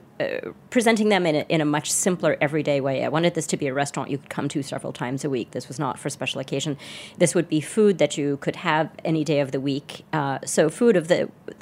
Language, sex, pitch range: English, female, 145-170 Hz